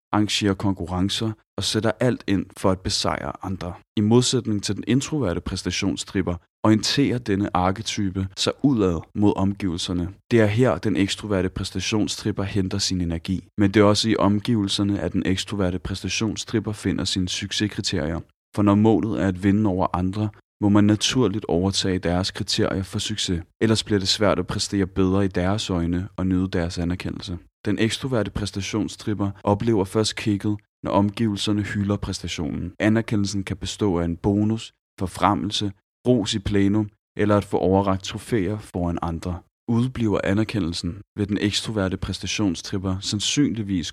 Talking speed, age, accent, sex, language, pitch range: 150 wpm, 30-49, native, male, Danish, 95-105 Hz